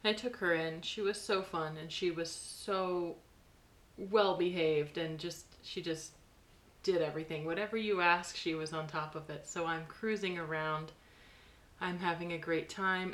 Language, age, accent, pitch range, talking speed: English, 30-49, American, 155-180 Hz, 175 wpm